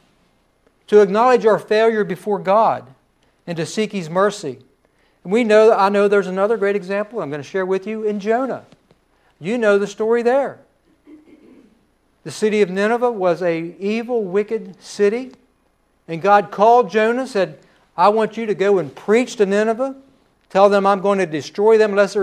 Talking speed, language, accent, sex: 175 wpm, English, American, male